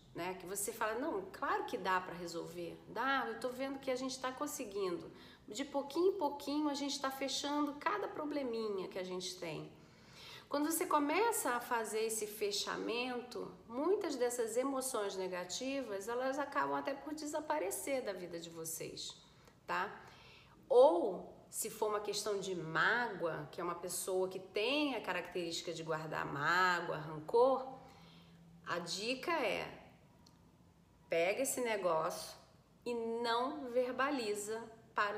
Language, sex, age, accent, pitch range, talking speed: Portuguese, female, 40-59, Brazilian, 185-270 Hz, 140 wpm